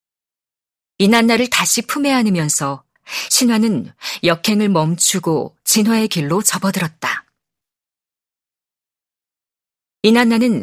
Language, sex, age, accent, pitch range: Korean, female, 40-59, native, 175-230 Hz